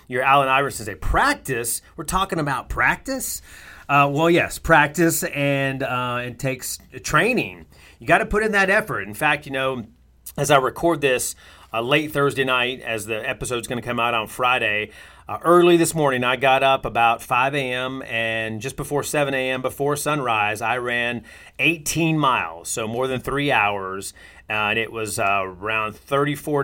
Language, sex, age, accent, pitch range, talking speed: English, male, 30-49, American, 115-145 Hz, 180 wpm